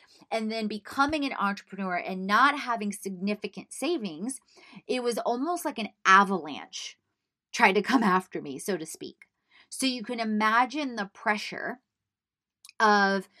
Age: 30-49